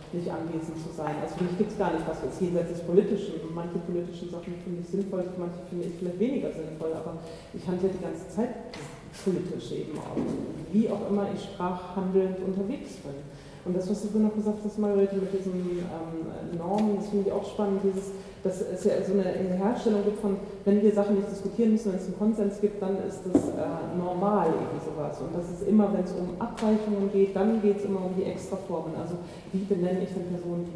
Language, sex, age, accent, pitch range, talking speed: German, female, 30-49, German, 175-200 Hz, 215 wpm